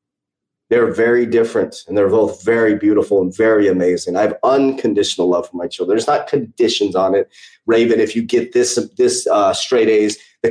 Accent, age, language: American, 30-49, English